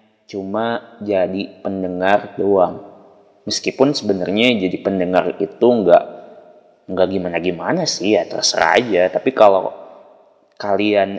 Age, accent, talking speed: 20-39, native, 95 wpm